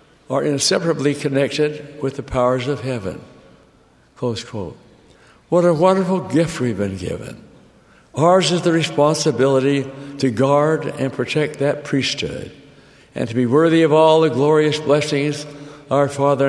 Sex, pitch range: male, 120-145 Hz